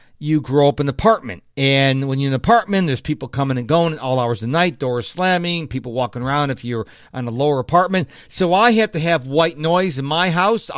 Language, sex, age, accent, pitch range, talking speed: English, male, 40-59, American, 130-180 Hz, 245 wpm